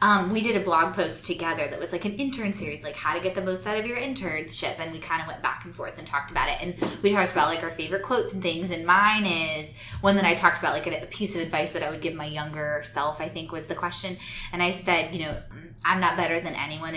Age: 20-39